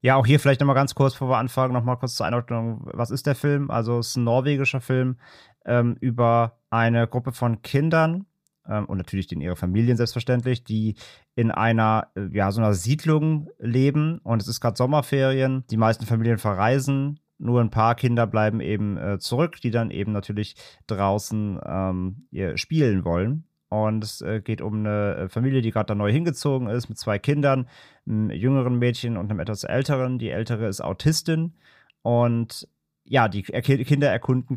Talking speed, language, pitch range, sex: 175 wpm, German, 110-135 Hz, male